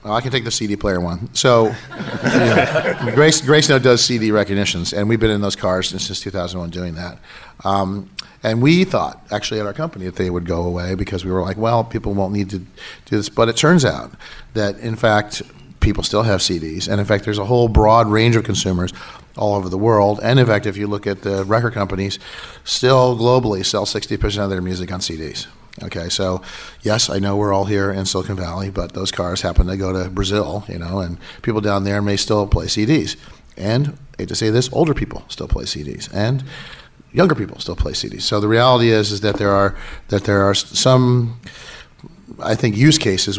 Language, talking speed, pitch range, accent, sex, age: English, 215 wpm, 95-115 Hz, American, male, 40-59